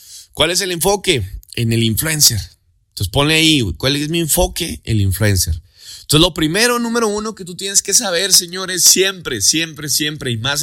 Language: Spanish